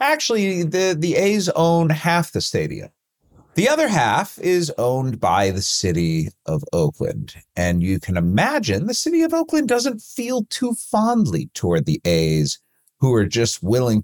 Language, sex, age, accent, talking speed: English, male, 40-59, American, 160 wpm